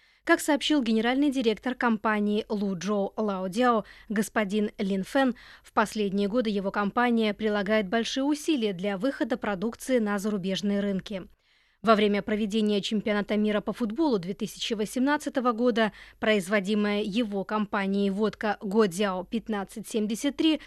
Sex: female